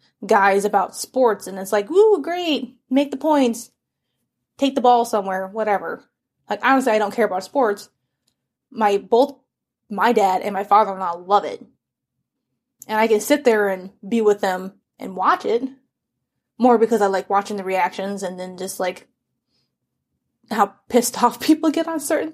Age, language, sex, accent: 20-39, English, female, American